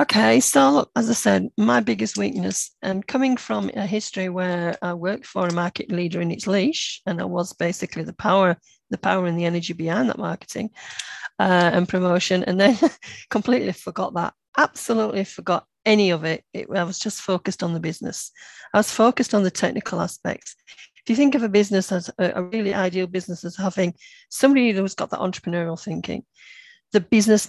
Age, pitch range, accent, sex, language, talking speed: 40-59, 175-215 Hz, British, female, English, 190 wpm